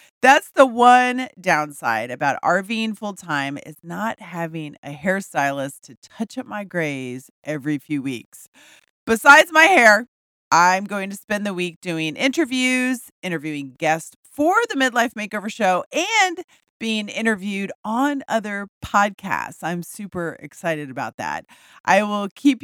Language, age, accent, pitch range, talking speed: English, 40-59, American, 170-250 Hz, 140 wpm